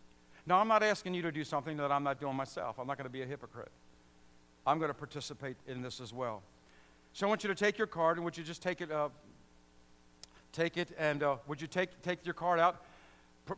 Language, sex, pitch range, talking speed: English, male, 120-175 Hz, 245 wpm